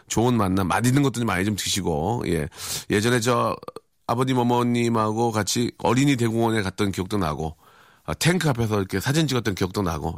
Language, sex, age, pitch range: Korean, male, 40-59, 95-135 Hz